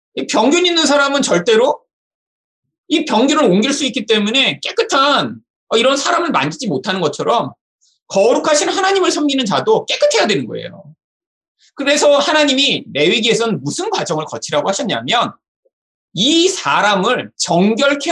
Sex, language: male, Korean